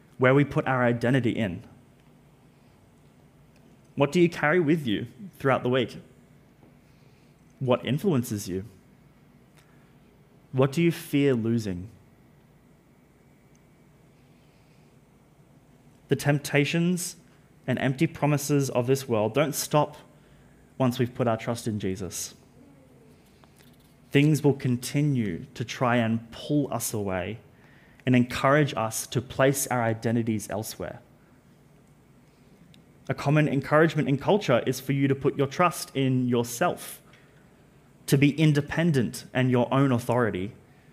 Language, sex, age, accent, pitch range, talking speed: English, male, 20-39, Australian, 120-145 Hz, 115 wpm